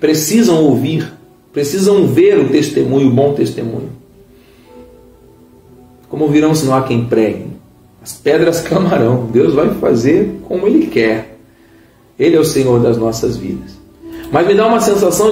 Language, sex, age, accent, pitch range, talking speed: Portuguese, male, 40-59, Brazilian, 125-170 Hz, 145 wpm